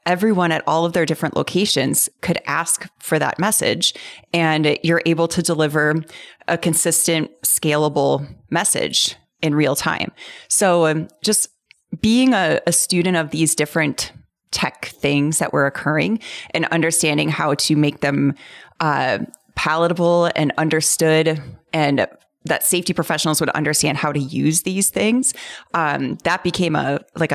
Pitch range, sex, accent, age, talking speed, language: 150-175 Hz, female, American, 30-49, 145 wpm, English